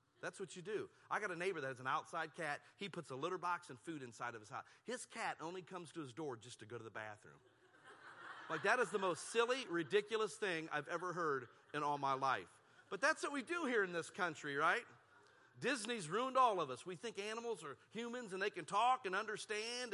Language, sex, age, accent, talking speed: English, male, 40-59, American, 235 wpm